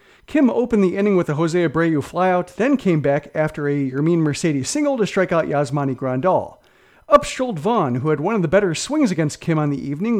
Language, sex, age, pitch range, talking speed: English, male, 40-59, 155-210 Hz, 220 wpm